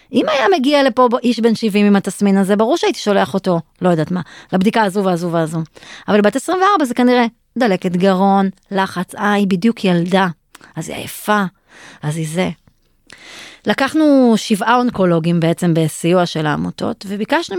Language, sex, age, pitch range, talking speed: Hebrew, female, 30-49, 175-240 Hz, 160 wpm